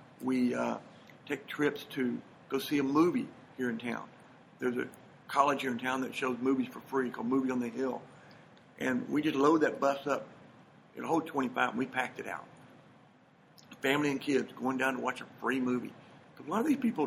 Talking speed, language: 210 wpm, English